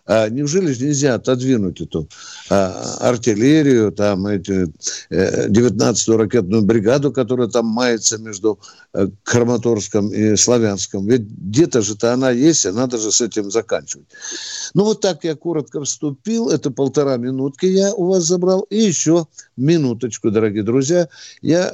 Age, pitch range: 60-79, 115-160 Hz